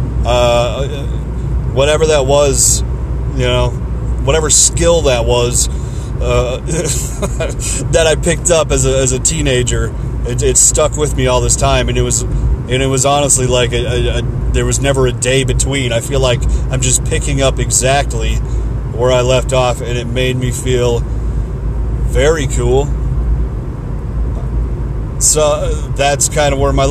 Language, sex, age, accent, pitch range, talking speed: English, male, 30-49, American, 115-135 Hz, 155 wpm